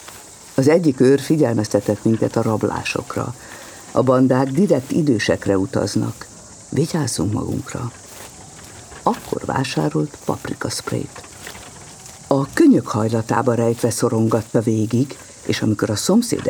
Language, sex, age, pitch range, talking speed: Hungarian, female, 50-69, 110-150 Hz, 100 wpm